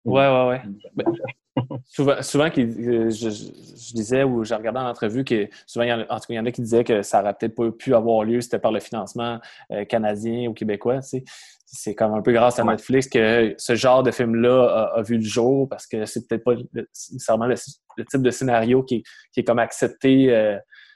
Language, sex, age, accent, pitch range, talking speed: French, male, 20-39, Canadian, 110-130 Hz, 220 wpm